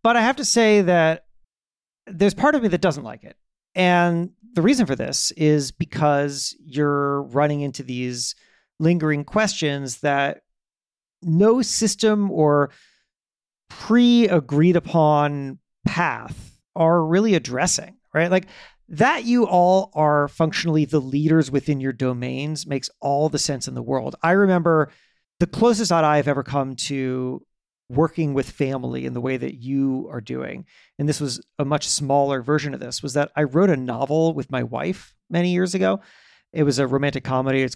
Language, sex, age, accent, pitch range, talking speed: English, male, 40-59, American, 140-185 Hz, 160 wpm